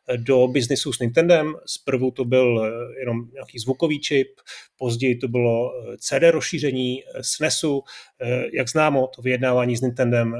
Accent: native